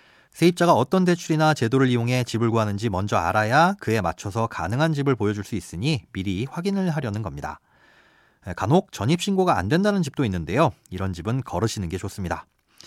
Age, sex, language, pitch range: 30-49, male, Korean, 105-155 Hz